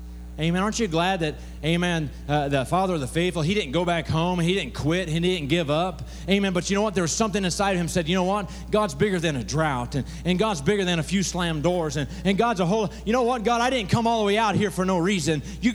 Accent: American